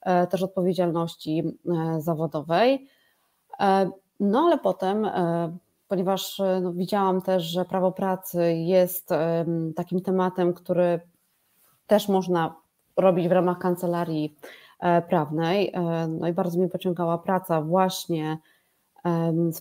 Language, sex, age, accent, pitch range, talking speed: Polish, female, 20-39, native, 165-190 Hz, 95 wpm